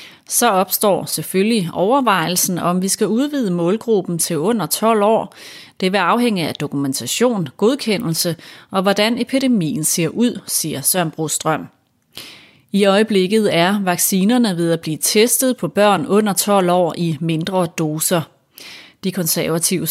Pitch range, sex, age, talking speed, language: 165-215 Hz, female, 30-49, 135 wpm, Danish